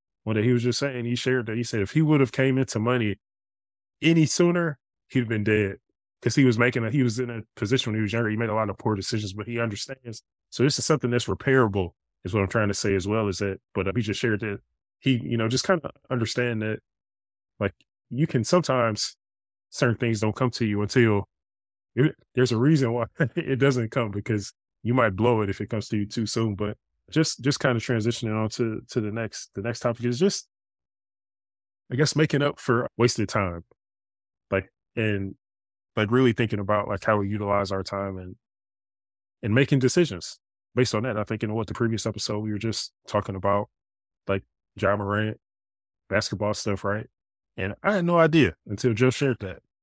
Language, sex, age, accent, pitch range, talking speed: English, male, 20-39, American, 100-125 Hz, 215 wpm